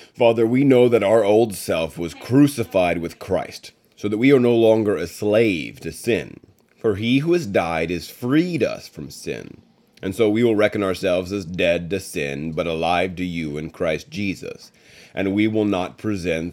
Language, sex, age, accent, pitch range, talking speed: English, male, 30-49, American, 85-110 Hz, 190 wpm